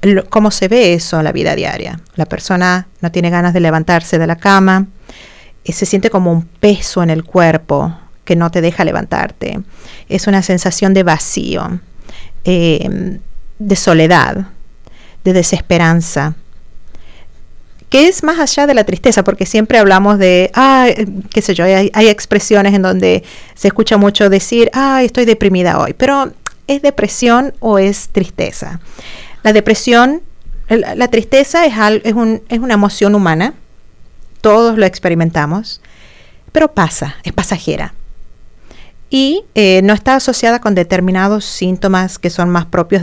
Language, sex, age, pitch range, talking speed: English, female, 40-59, 170-215 Hz, 150 wpm